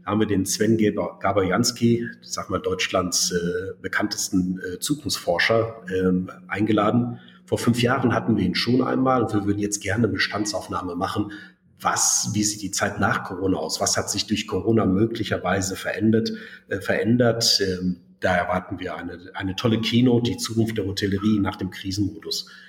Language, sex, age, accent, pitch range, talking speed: German, male, 40-59, German, 95-115 Hz, 165 wpm